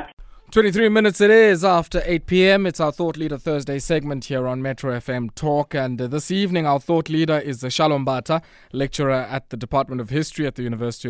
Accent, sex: South African, male